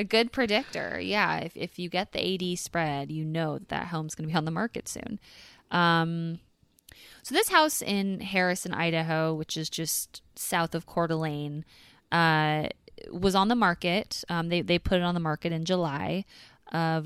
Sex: female